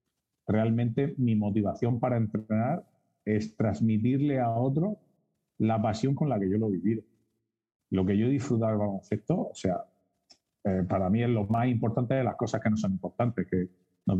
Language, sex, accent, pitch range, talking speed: Spanish, male, Spanish, 100-125 Hz, 170 wpm